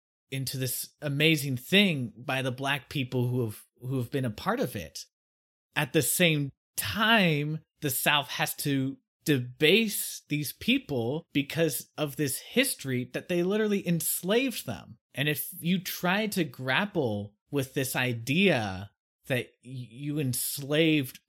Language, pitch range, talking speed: English, 125-165 Hz, 140 wpm